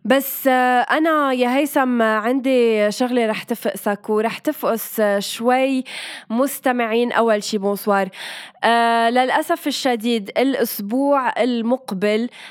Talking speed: 90 wpm